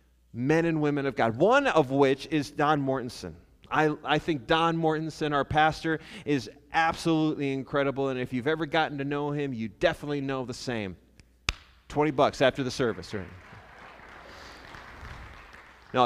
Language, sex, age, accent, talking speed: English, male, 30-49, American, 155 wpm